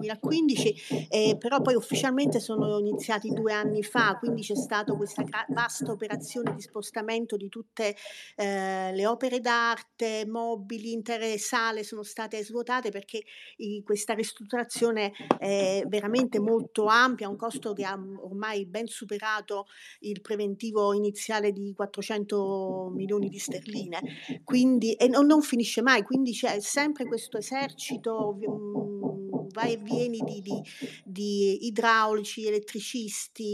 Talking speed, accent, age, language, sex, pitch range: 130 wpm, native, 40-59, Italian, female, 205-235 Hz